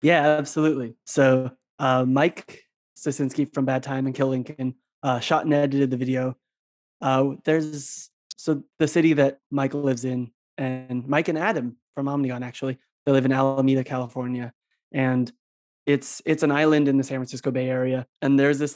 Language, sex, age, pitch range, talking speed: English, male, 20-39, 125-140 Hz, 170 wpm